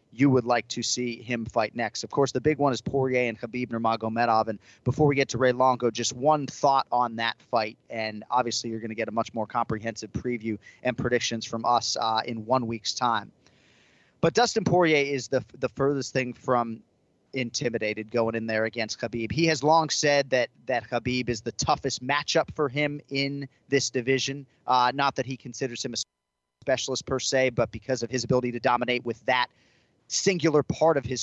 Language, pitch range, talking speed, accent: English, 120-140 Hz, 200 wpm, American